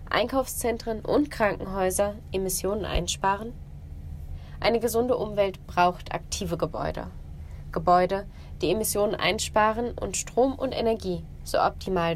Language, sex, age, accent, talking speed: German, female, 20-39, German, 105 wpm